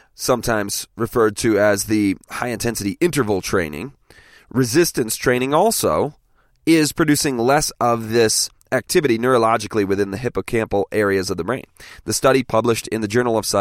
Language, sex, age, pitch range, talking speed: English, male, 30-49, 105-160 Hz, 140 wpm